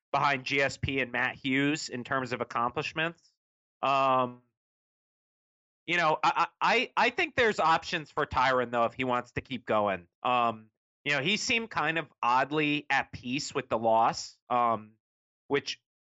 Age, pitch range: 30-49, 120-150 Hz